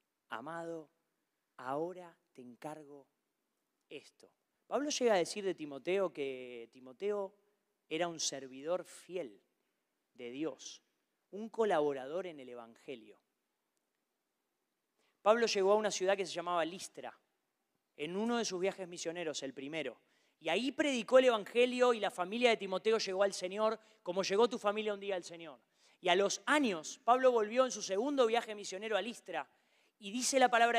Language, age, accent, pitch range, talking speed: Spanish, 30-49, Argentinian, 180-245 Hz, 155 wpm